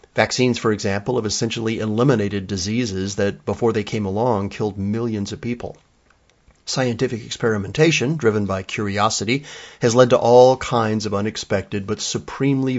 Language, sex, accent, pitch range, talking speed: English, male, American, 100-125 Hz, 140 wpm